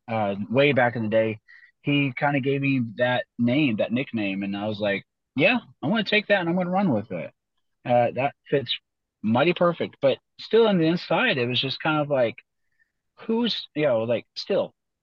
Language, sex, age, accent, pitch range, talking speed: English, male, 30-49, American, 110-140 Hz, 210 wpm